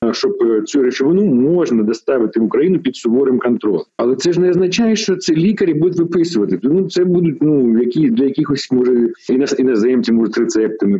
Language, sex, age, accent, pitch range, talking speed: Ukrainian, male, 40-59, native, 115-160 Hz, 165 wpm